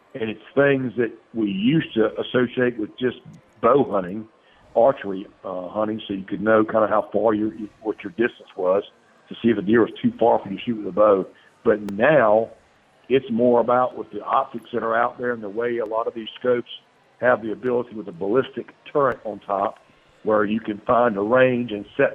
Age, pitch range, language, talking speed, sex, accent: 50-69, 105-125 Hz, English, 220 wpm, male, American